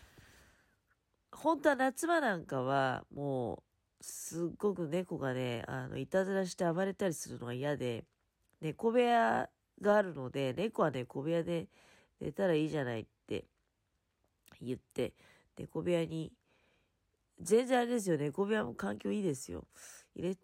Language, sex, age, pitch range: Japanese, female, 40-59, 130-210 Hz